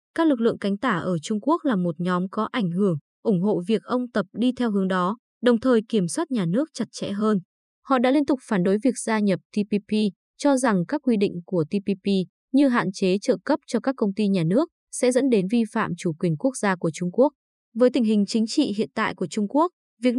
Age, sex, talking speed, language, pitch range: 20-39, female, 245 wpm, Vietnamese, 190-250 Hz